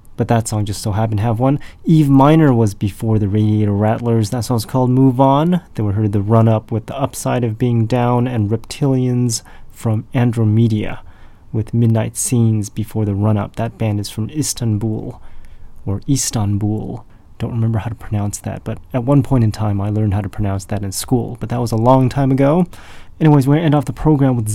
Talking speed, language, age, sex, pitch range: 210 wpm, English, 30-49, male, 105-125 Hz